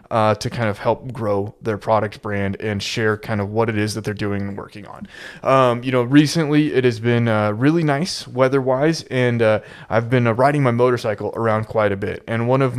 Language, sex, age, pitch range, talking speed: English, male, 20-39, 110-135 Hz, 230 wpm